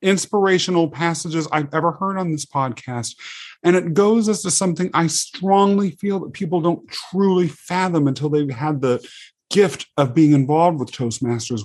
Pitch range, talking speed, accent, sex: 135-180 Hz, 165 wpm, American, male